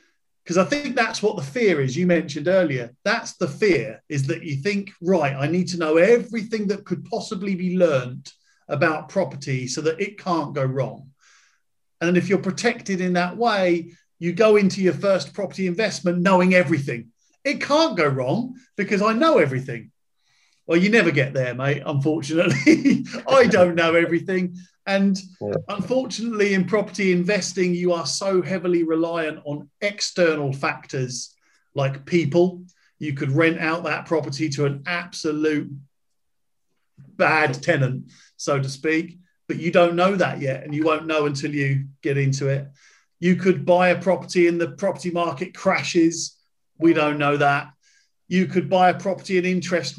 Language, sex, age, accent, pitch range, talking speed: English, male, 40-59, British, 150-190 Hz, 165 wpm